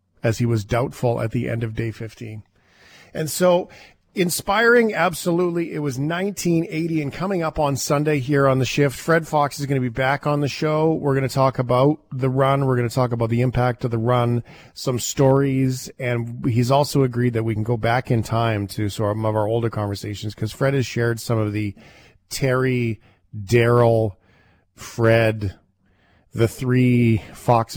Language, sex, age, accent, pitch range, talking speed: English, male, 40-59, American, 105-135 Hz, 185 wpm